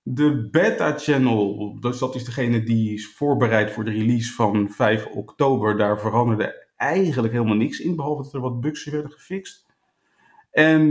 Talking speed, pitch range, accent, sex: 165 wpm, 115-155 Hz, Dutch, male